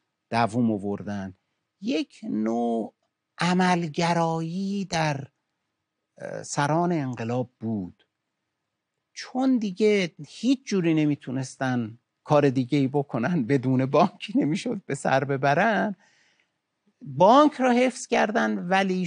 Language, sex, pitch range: Persian, male, 105-165 Hz